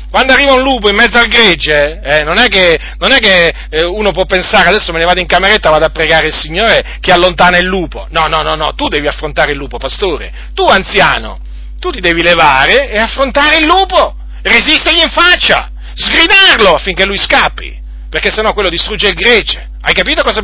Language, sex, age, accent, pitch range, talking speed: Italian, male, 40-59, native, 135-220 Hz, 210 wpm